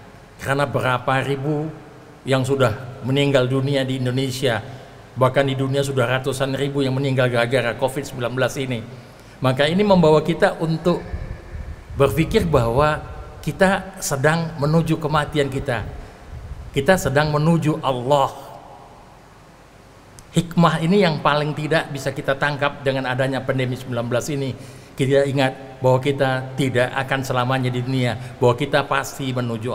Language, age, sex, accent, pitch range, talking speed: Indonesian, 50-69, male, native, 130-170 Hz, 125 wpm